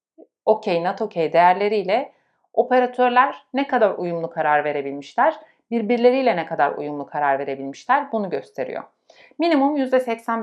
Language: Turkish